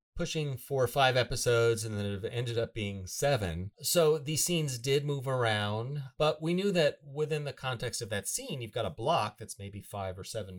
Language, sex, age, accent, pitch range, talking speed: English, male, 30-49, American, 100-130 Hz, 205 wpm